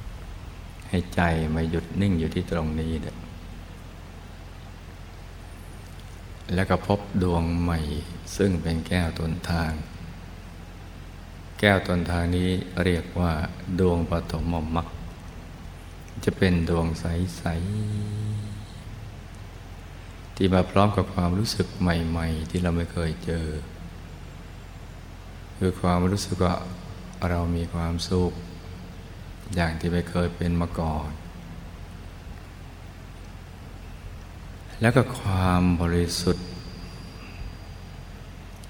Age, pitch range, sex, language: 60-79, 85-95 Hz, male, Thai